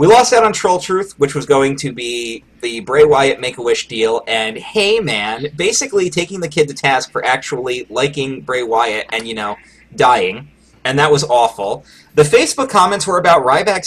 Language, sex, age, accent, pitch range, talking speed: English, male, 30-49, American, 140-220 Hz, 190 wpm